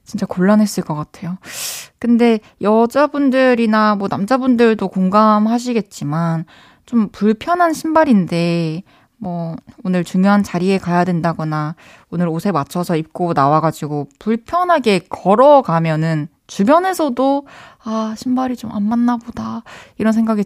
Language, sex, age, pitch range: Korean, female, 20-39, 180-250 Hz